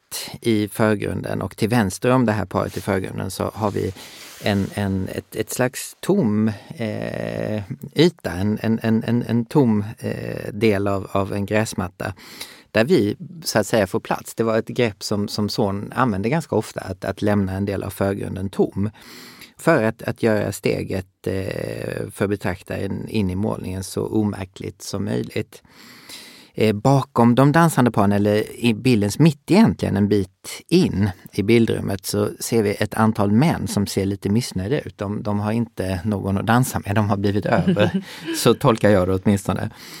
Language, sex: Swedish, male